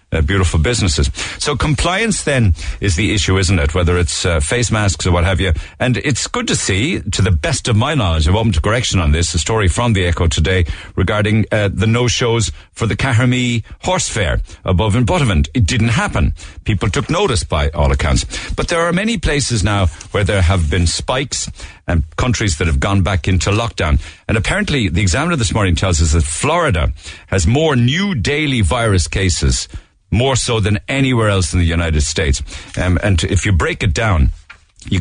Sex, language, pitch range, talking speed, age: male, English, 80-110 Hz, 200 wpm, 60-79